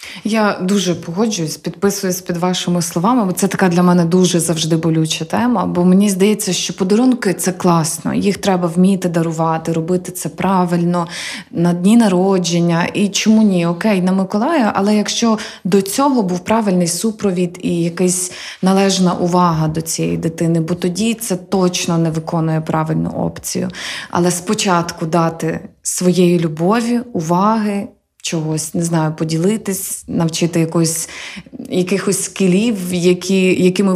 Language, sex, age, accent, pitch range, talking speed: Ukrainian, female, 20-39, native, 170-200 Hz, 135 wpm